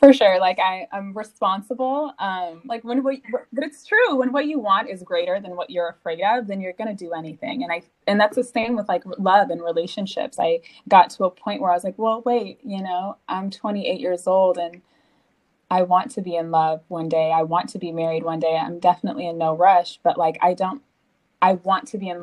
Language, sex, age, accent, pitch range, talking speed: English, female, 20-39, American, 165-195 Hz, 230 wpm